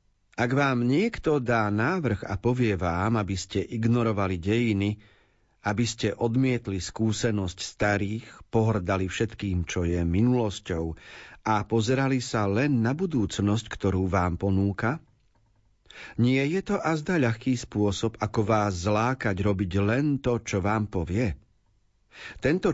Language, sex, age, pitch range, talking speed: Slovak, male, 40-59, 100-130 Hz, 125 wpm